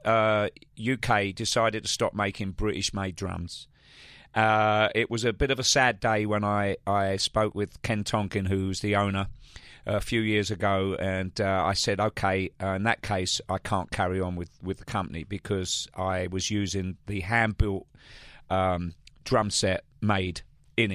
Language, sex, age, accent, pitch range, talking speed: English, male, 40-59, British, 95-115 Hz, 170 wpm